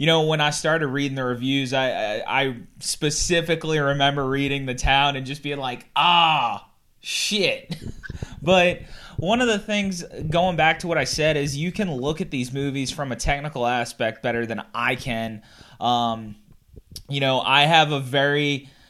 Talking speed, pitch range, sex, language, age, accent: 175 wpm, 125-150 Hz, male, English, 20-39, American